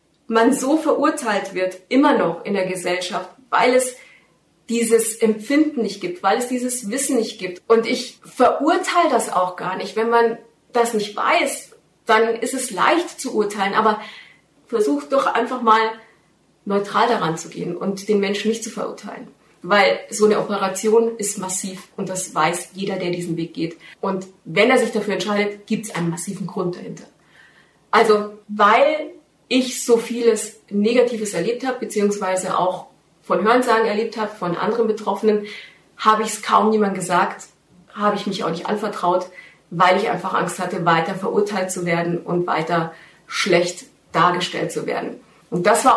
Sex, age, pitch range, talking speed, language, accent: female, 30-49, 185-235 Hz, 165 wpm, German, German